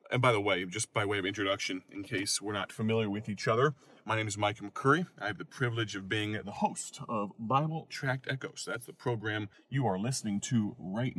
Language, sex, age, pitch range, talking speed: English, male, 30-49, 100-125 Hz, 230 wpm